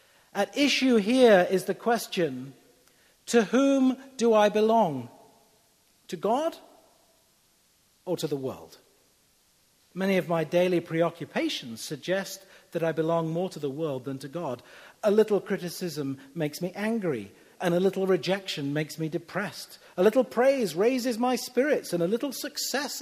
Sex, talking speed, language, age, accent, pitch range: male, 145 wpm, English, 50-69, British, 150-220 Hz